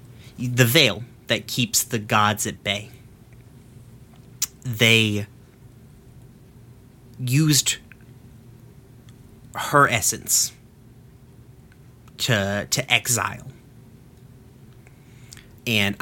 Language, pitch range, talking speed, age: English, 105-125 Hz, 60 wpm, 30-49